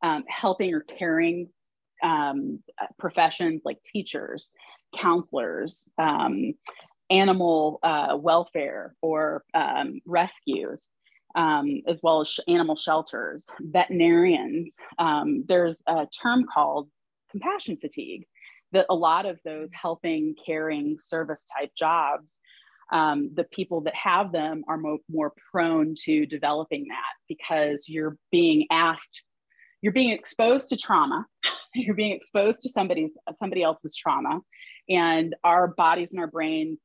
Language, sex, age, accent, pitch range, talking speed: English, female, 30-49, American, 160-210 Hz, 125 wpm